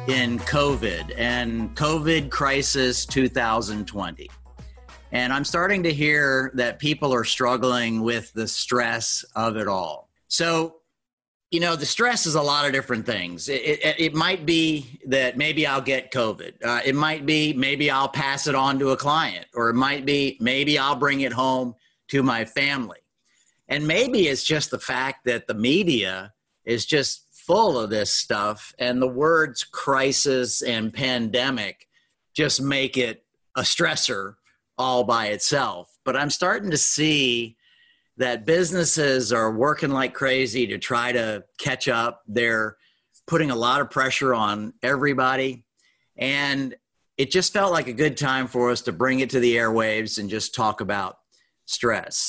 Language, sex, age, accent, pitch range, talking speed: English, male, 50-69, American, 120-150 Hz, 160 wpm